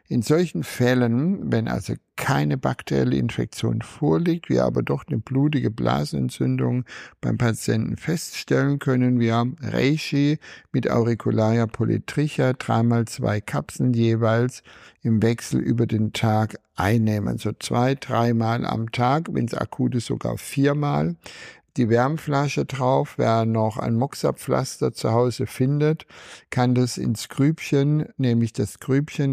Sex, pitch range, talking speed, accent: male, 110-135 Hz, 125 wpm, German